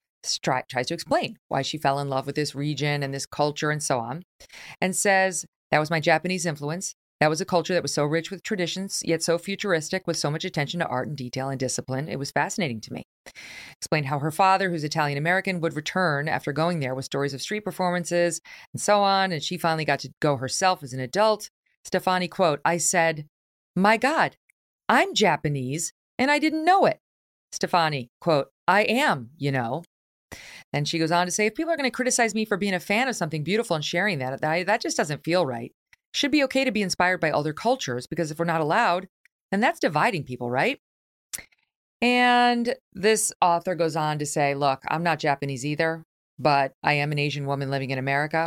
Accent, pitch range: American, 145-190 Hz